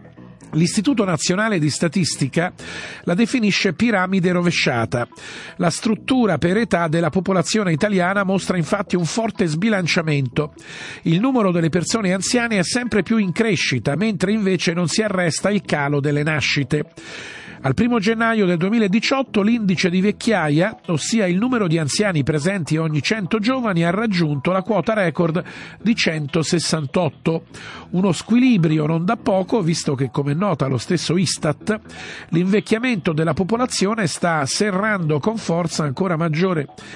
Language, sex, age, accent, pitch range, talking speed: Italian, male, 50-69, native, 155-205 Hz, 135 wpm